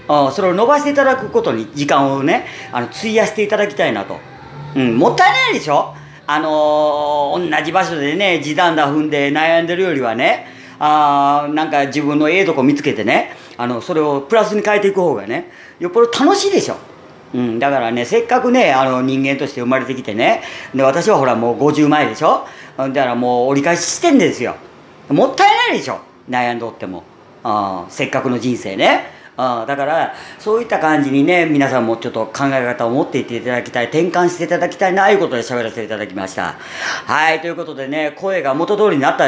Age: 40-59